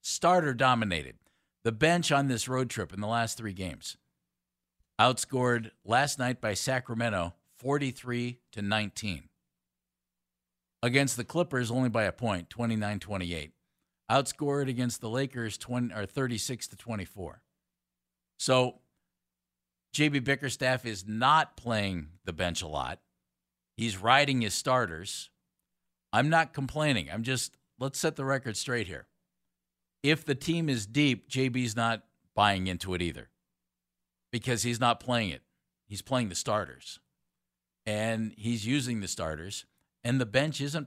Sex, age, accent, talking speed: male, 50-69, American, 130 wpm